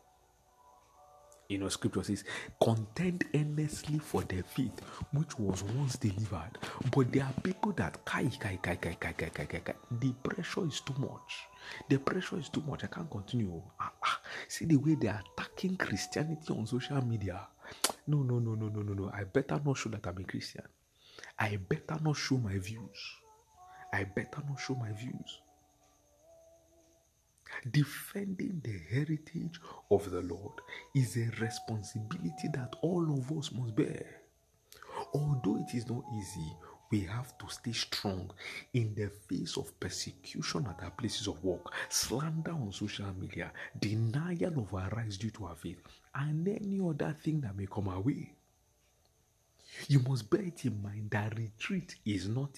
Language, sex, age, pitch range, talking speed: English, male, 50-69, 100-145 Hz, 165 wpm